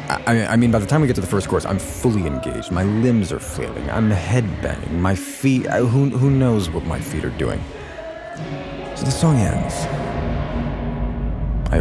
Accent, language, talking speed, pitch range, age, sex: American, English, 185 wpm, 80-110 Hz, 40-59, male